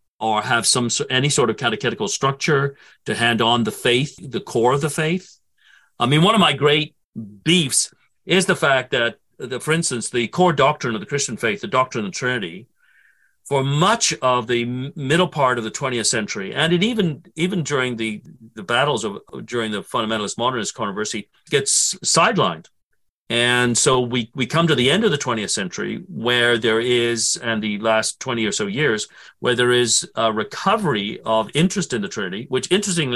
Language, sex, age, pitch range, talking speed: English, male, 50-69, 120-160 Hz, 185 wpm